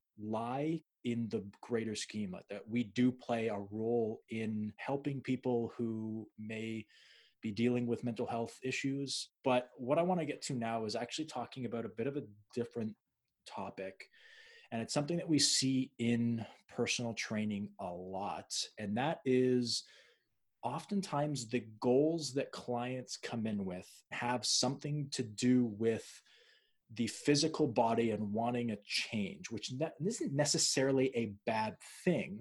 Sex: male